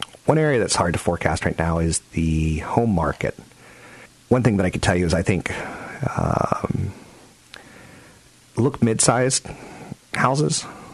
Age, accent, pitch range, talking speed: 40-59, American, 80-120 Hz, 145 wpm